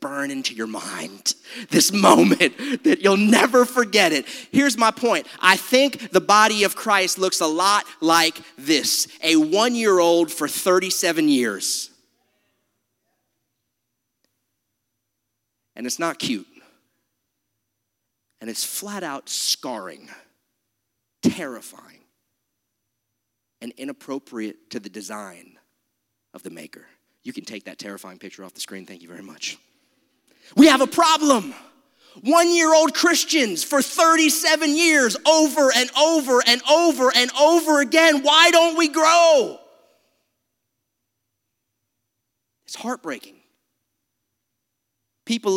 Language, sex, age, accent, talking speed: English, male, 30-49, American, 115 wpm